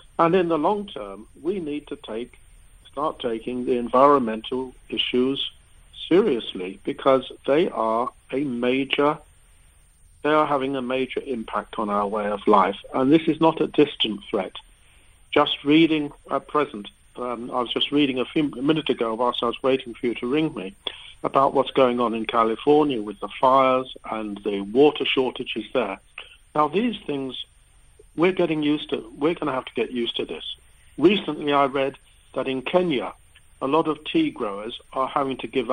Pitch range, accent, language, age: 110-145 Hz, British, English, 50-69